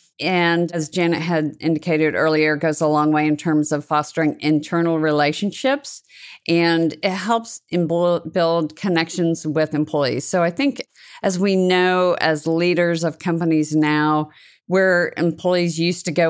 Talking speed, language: 145 wpm, English